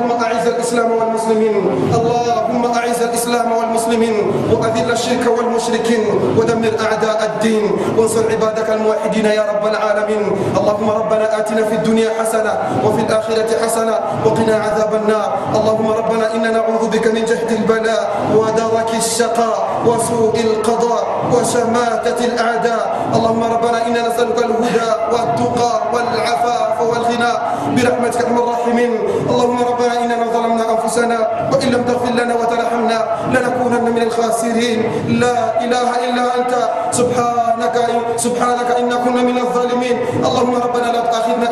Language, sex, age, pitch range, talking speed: Swahili, male, 30-49, 225-245 Hz, 115 wpm